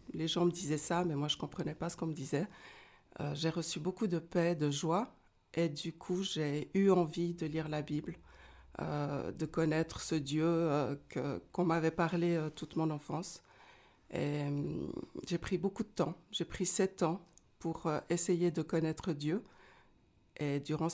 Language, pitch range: French, 150-185 Hz